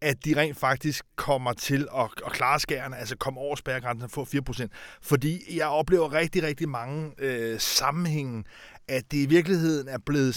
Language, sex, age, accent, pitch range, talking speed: Danish, male, 30-49, native, 125-150 Hz, 175 wpm